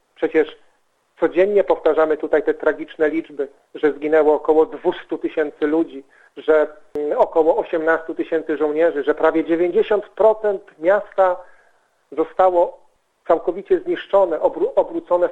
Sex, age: male, 50-69